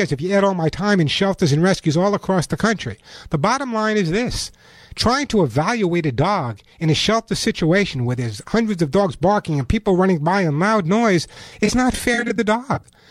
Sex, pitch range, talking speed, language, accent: male, 140-190 Hz, 215 wpm, English, American